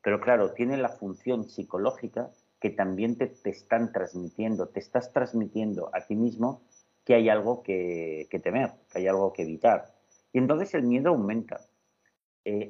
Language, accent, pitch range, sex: Spanish, Spanish, 95-115 Hz, male